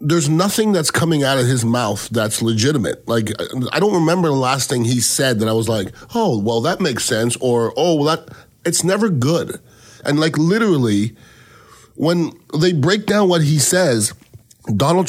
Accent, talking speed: American, 185 wpm